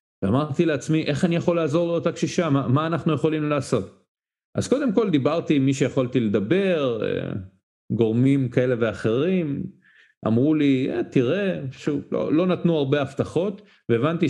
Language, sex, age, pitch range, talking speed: Hebrew, male, 40-59, 120-165 Hz, 145 wpm